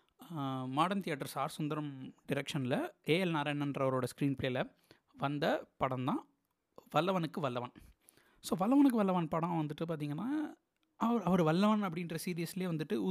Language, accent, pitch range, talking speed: Tamil, native, 145-190 Hz, 115 wpm